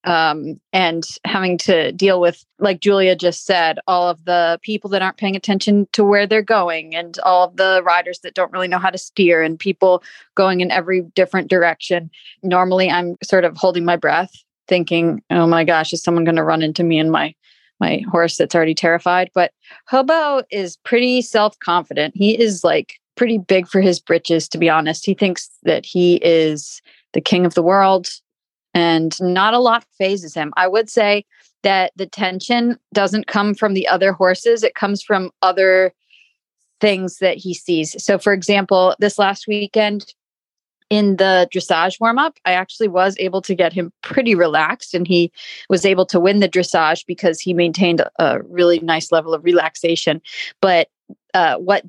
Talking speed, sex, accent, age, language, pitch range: 185 wpm, female, American, 30-49, English, 170-200 Hz